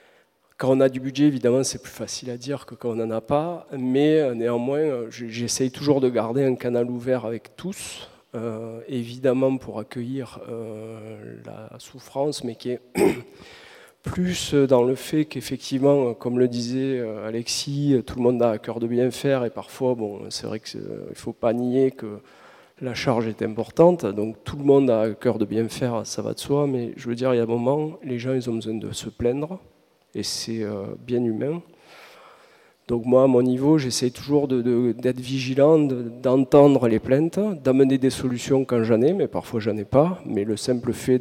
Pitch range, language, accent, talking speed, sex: 115-140 Hz, French, French, 195 wpm, male